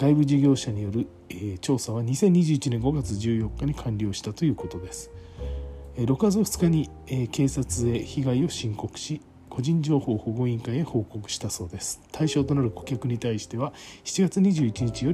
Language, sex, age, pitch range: Japanese, male, 40-59, 95-140 Hz